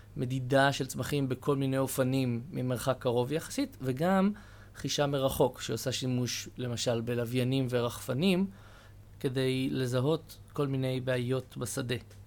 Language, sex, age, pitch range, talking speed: Hebrew, male, 20-39, 120-145 Hz, 110 wpm